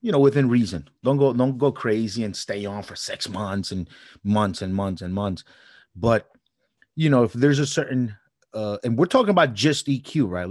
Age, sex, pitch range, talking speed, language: 30-49, male, 105-135 Hz, 205 wpm, English